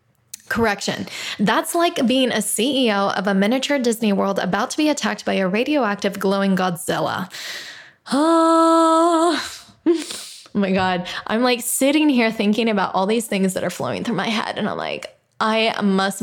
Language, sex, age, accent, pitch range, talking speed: English, female, 10-29, American, 190-250 Hz, 165 wpm